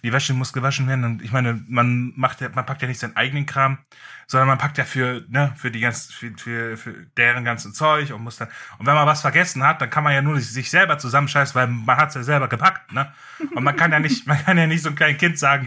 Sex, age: male, 10-29